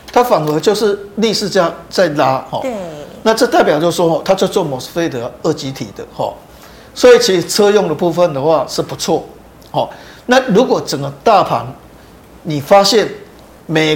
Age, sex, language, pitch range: 50-69, male, Chinese, 145-185 Hz